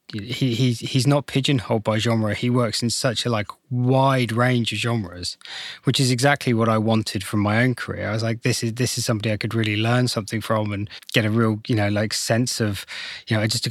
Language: English